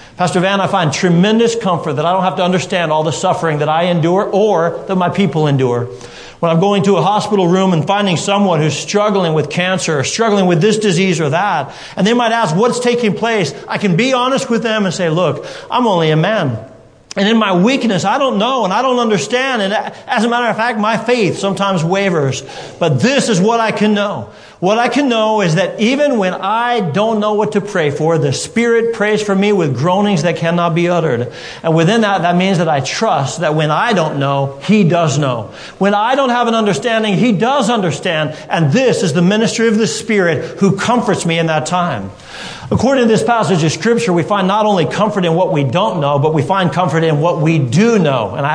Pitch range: 155-210 Hz